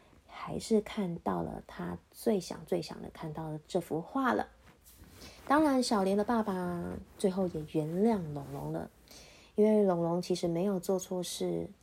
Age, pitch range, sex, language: 20-39, 180-245 Hz, female, Chinese